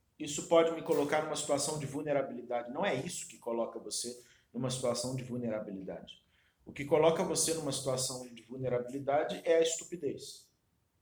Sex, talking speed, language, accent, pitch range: male, 160 wpm, Portuguese, Brazilian, 95-140 Hz